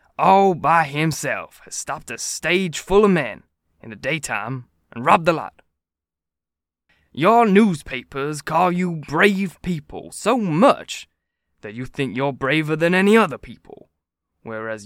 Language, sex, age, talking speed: English, male, 20-39, 140 wpm